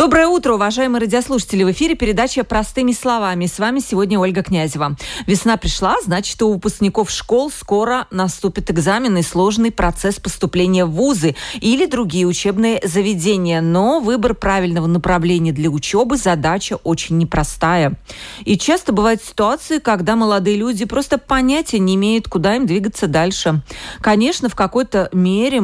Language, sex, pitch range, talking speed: Russian, female, 175-230 Hz, 145 wpm